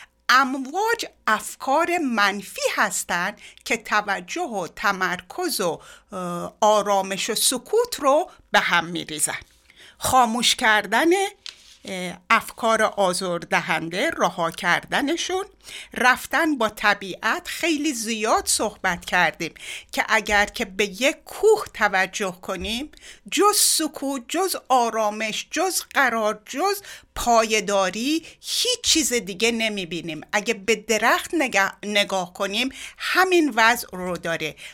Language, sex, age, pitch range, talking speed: Persian, female, 60-79, 195-290 Hz, 100 wpm